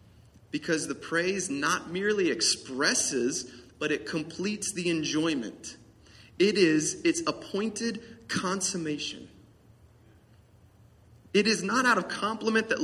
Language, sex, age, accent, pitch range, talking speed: English, male, 30-49, American, 145-240 Hz, 105 wpm